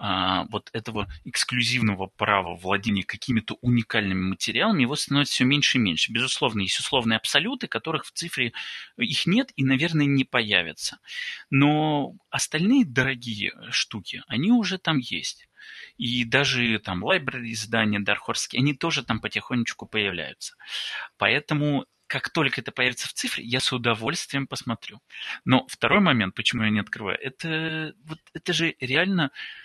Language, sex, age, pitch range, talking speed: Russian, male, 30-49, 115-155 Hz, 140 wpm